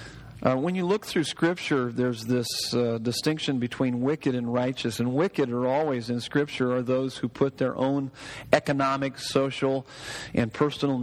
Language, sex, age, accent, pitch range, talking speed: English, male, 40-59, American, 120-140 Hz, 165 wpm